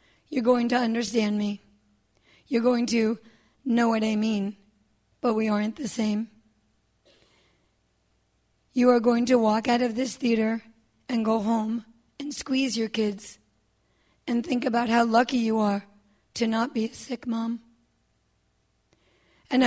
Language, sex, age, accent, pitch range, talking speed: English, female, 40-59, American, 220-250 Hz, 145 wpm